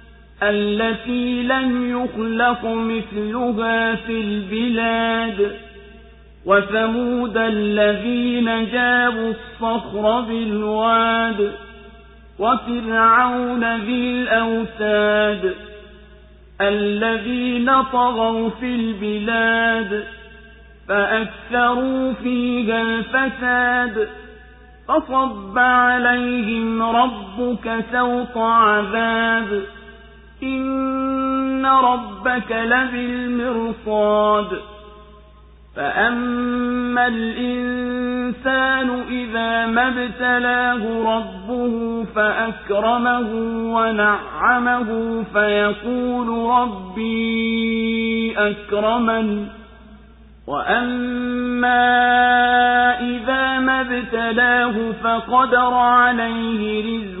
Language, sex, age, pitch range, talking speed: Swahili, male, 50-69, 225-245 Hz, 45 wpm